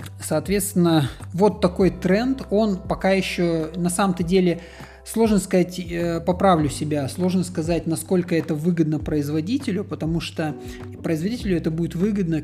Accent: native